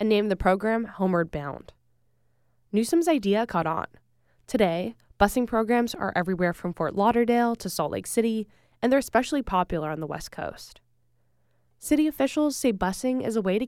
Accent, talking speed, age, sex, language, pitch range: American, 165 wpm, 10-29, female, English, 175-245 Hz